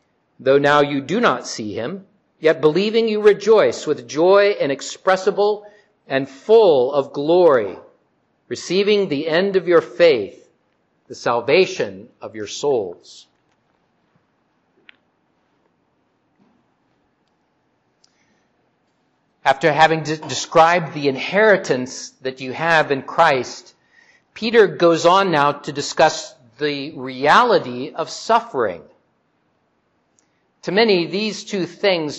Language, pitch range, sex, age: English, 150-210 Hz, male, 50-69